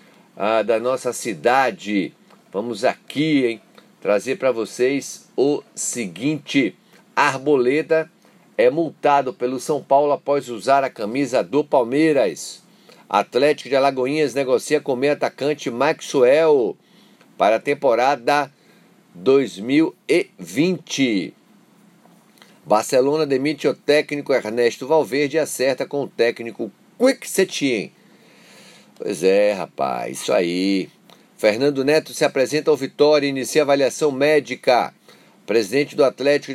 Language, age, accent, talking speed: Portuguese, 50-69, Brazilian, 110 wpm